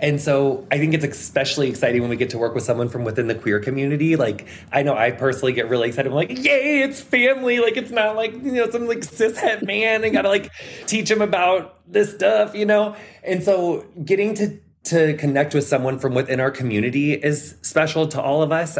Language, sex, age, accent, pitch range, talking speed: English, male, 20-39, American, 120-155 Hz, 225 wpm